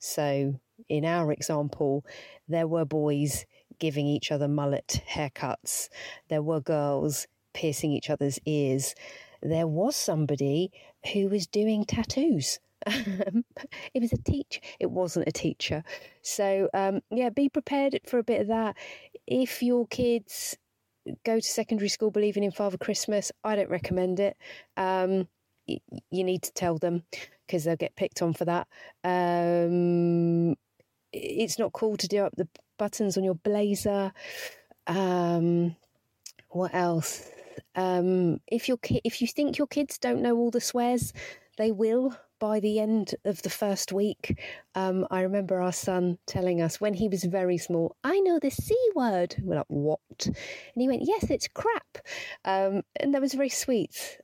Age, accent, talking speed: 40-59, British, 155 wpm